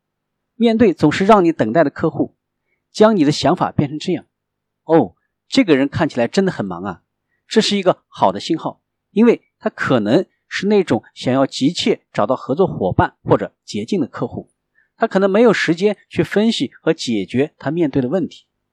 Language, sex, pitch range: Chinese, male, 145-220 Hz